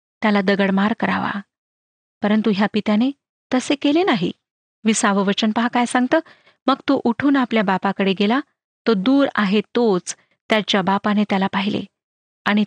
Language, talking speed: Marathi, 135 wpm